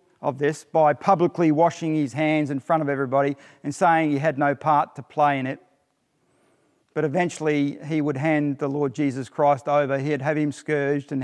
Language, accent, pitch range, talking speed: English, Australian, 140-160 Hz, 190 wpm